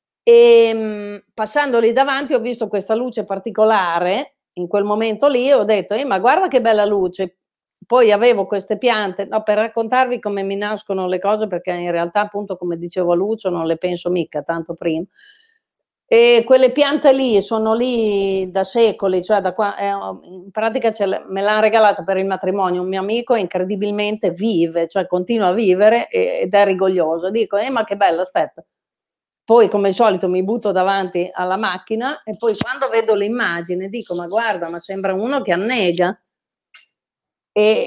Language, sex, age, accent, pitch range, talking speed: Italian, female, 40-59, native, 180-225 Hz, 170 wpm